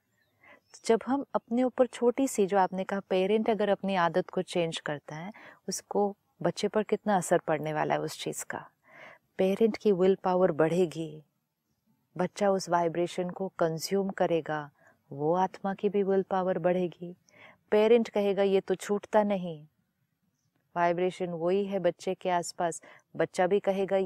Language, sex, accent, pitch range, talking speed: Hindi, female, native, 180-220 Hz, 150 wpm